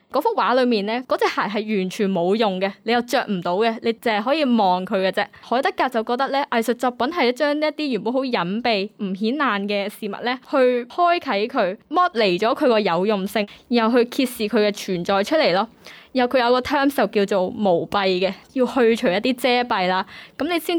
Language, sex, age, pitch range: Chinese, female, 10-29, 205-260 Hz